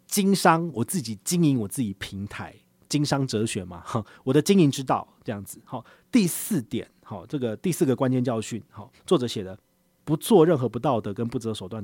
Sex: male